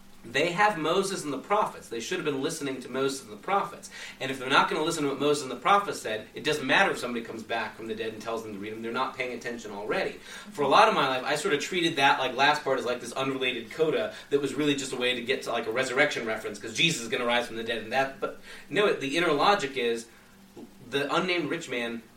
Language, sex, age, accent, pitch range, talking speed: English, male, 30-49, American, 115-145 Hz, 280 wpm